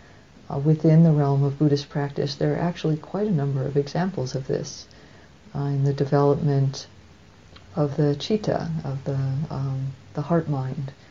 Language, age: English, 50-69